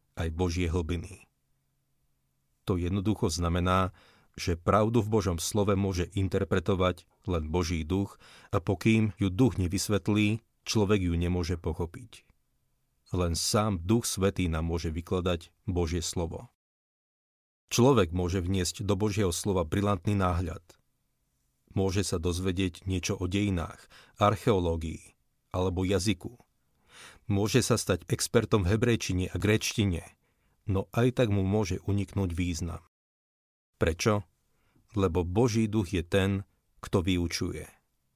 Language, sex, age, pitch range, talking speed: Slovak, male, 40-59, 90-105 Hz, 115 wpm